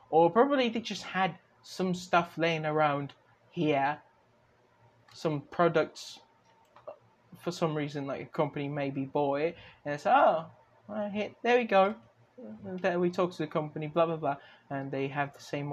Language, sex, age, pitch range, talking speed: English, male, 20-39, 140-180 Hz, 155 wpm